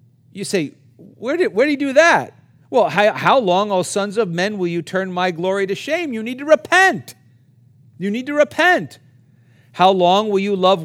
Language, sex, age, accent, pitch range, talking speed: English, male, 50-69, American, 140-210 Hz, 210 wpm